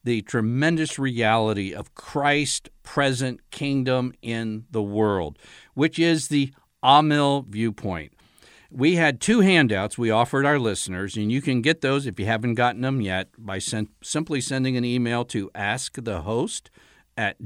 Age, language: 50-69, English